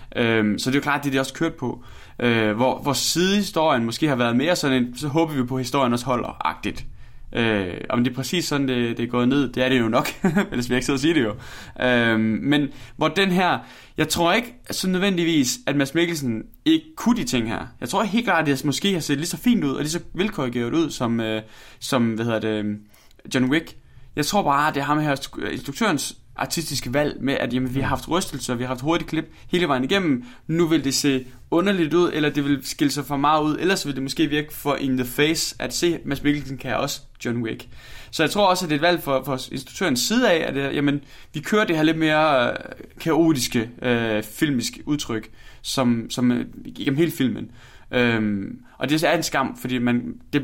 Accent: native